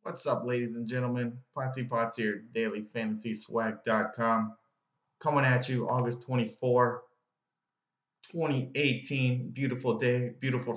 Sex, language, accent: male, English, American